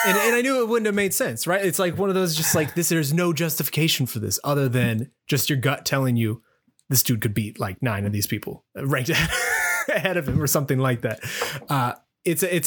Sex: male